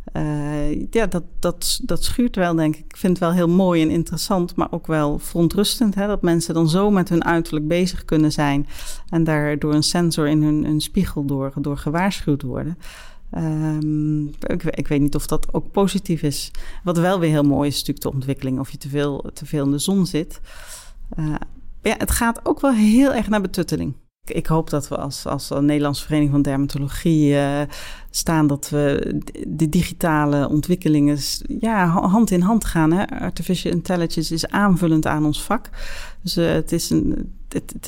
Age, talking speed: 40-59, 175 wpm